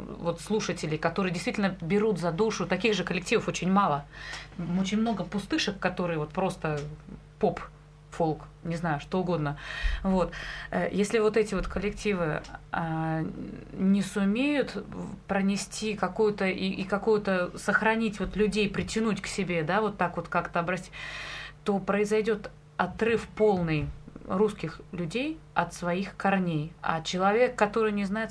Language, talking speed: Russian, 135 wpm